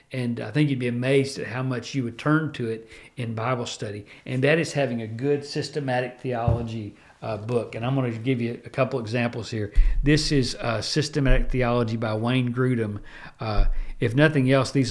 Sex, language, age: male, English, 50-69